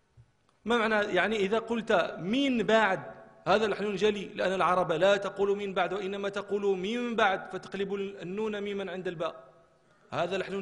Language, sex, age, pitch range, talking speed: Arabic, male, 40-59, 165-205 Hz, 155 wpm